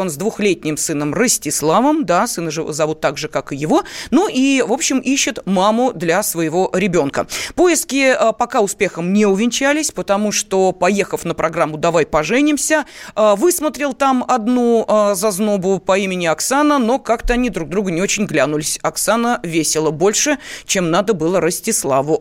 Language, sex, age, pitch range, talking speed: Russian, female, 30-49, 175-265 Hz, 155 wpm